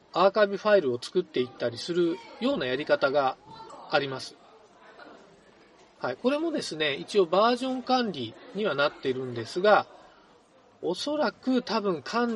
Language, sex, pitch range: Japanese, male, 150-220 Hz